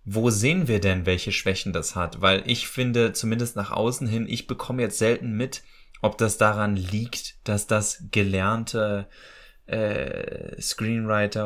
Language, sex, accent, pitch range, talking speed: German, male, German, 100-115 Hz, 150 wpm